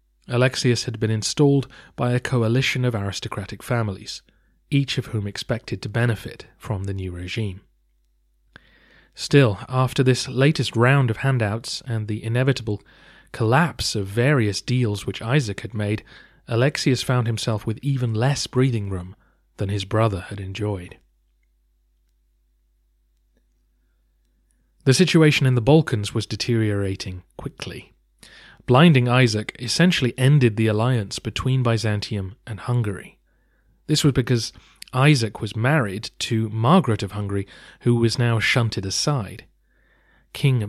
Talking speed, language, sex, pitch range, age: 125 wpm, English, male, 100-125 Hz, 30-49